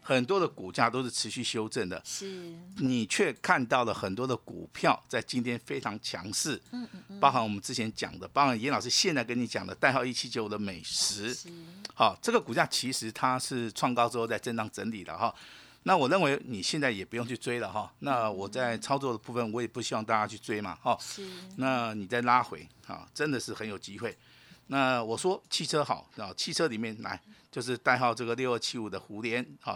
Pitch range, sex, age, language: 110-150 Hz, male, 50-69, Chinese